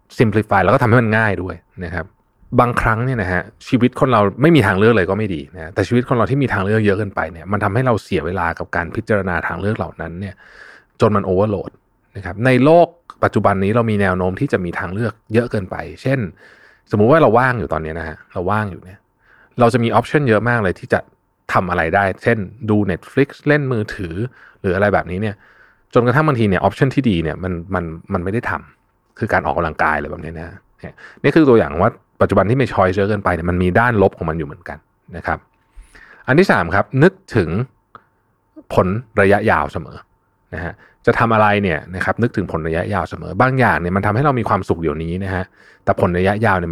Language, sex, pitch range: Thai, male, 90-115 Hz